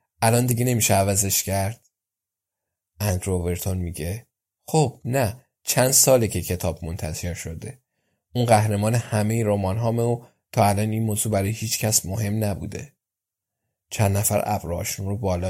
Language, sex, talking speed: Persian, male, 130 wpm